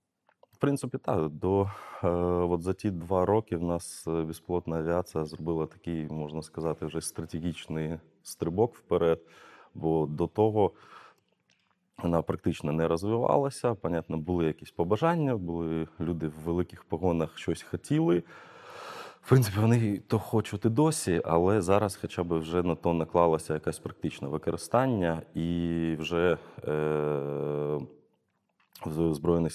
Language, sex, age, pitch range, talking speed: Ukrainian, male, 20-39, 75-90 Hz, 125 wpm